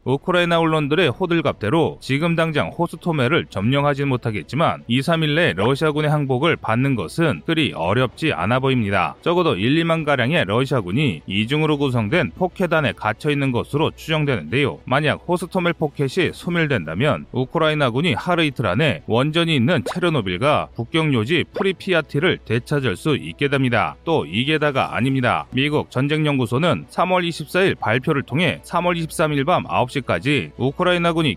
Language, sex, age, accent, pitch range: Korean, male, 30-49, native, 125-165 Hz